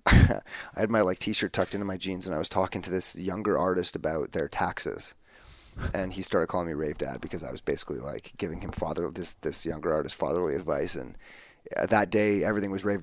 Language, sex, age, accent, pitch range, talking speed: English, male, 30-49, American, 90-105 Hz, 215 wpm